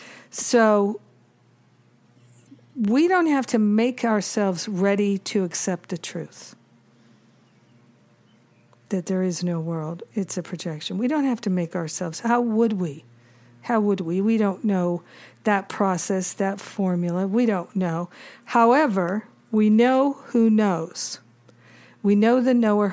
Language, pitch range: English, 170-220 Hz